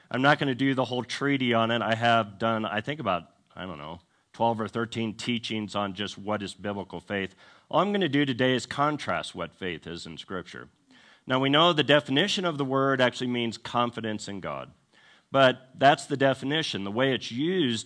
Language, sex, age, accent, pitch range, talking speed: English, male, 50-69, American, 110-135 Hz, 210 wpm